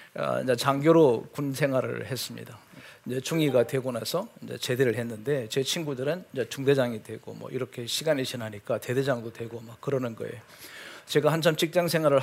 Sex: male